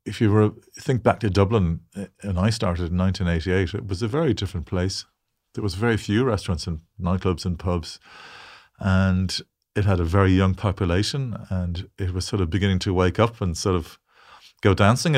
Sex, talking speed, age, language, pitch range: male, 190 wpm, 40-59, English, 90-105 Hz